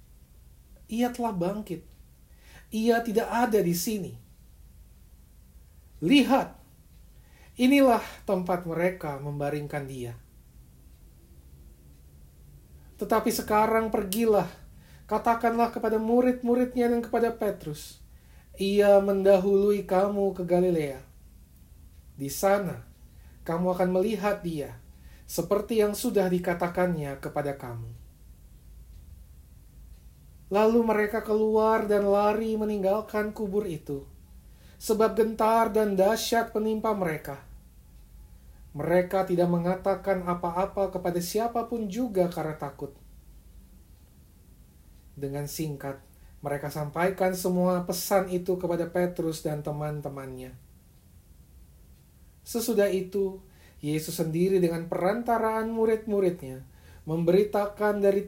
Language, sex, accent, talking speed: Indonesian, male, native, 85 wpm